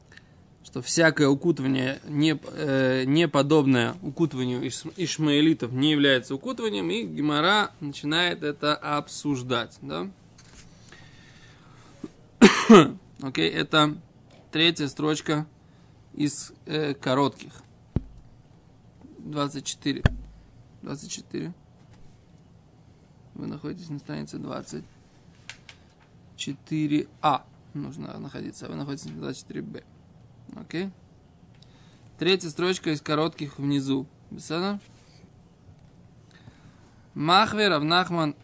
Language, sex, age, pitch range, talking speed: Russian, male, 20-39, 135-160 Hz, 70 wpm